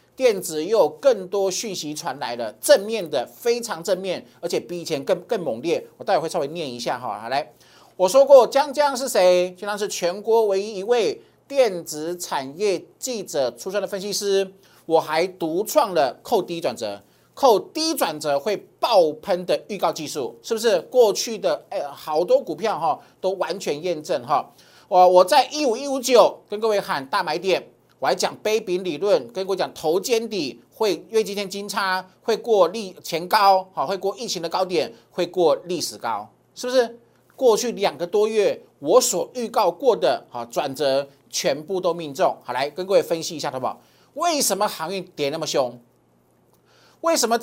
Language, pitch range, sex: Chinese, 175-265 Hz, male